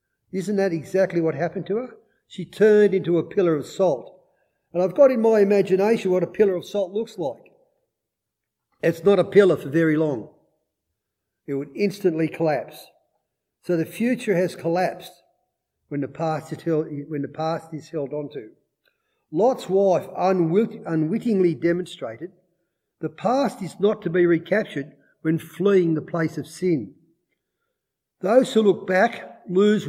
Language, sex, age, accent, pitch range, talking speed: English, male, 50-69, Australian, 155-195 Hz, 145 wpm